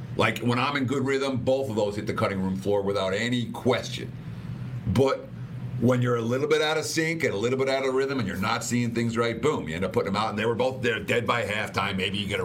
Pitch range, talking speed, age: 105-130 Hz, 275 wpm, 50-69